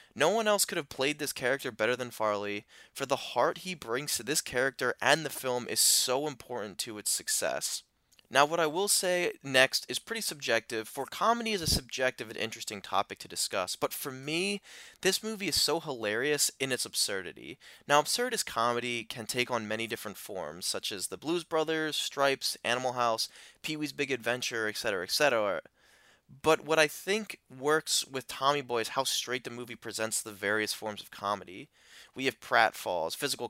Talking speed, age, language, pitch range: 185 wpm, 20-39, English, 115-160 Hz